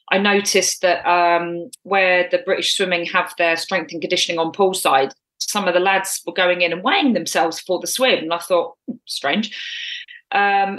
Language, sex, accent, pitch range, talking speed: English, female, British, 170-200 Hz, 185 wpm